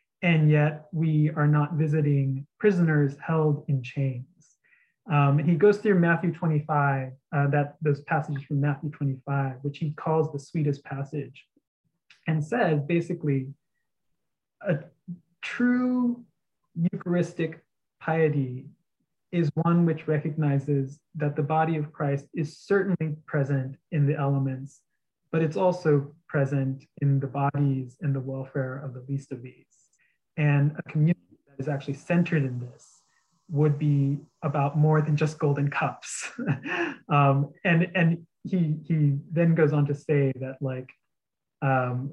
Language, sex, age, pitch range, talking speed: English, male, 20-39, 140-165 Hz, 140 wpm